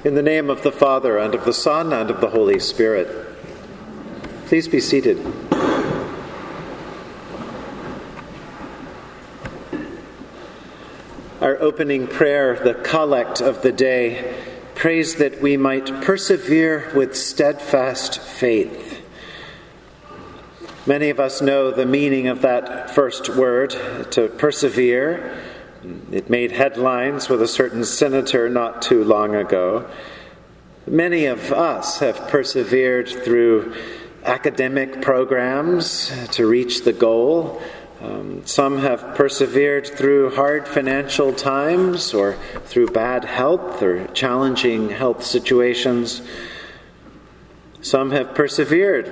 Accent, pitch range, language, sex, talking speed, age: American, 125-145 Hz, English, male, 105 wpm, 50-69